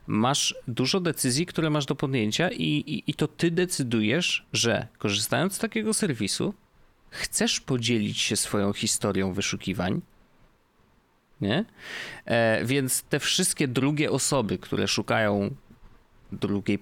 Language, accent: Polish, native